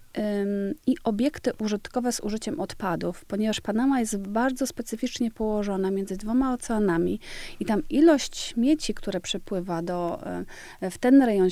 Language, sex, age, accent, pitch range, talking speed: Polish, female, 30-49, native, 195-240 Hz, 130 wpm